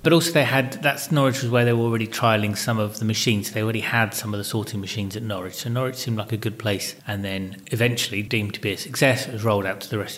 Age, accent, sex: 30-49, British, male